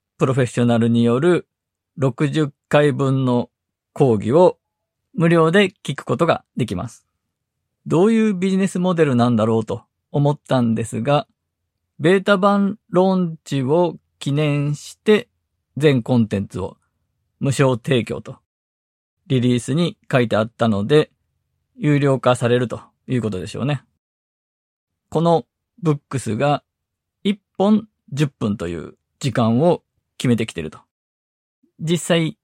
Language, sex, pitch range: Japanese, male, 115-165 Hz